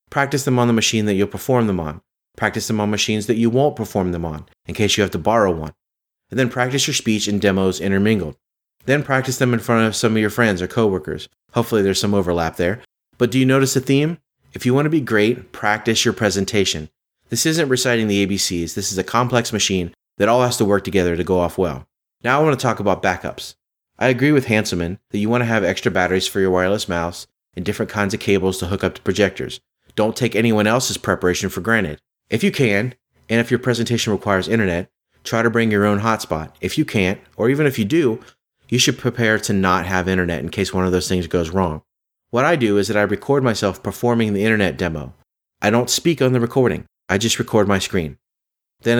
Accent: American